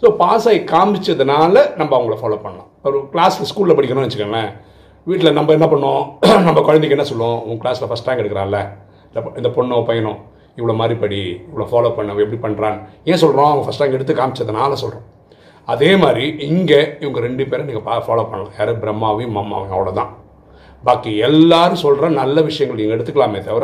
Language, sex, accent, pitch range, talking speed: Tamil, male, native, 105-150 Hz, 170 wpm